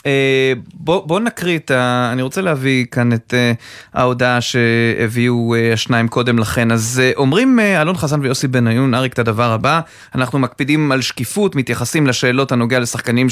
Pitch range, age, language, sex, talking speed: 120-165 Hz, 30-49, Hebrew, male, 170 wpm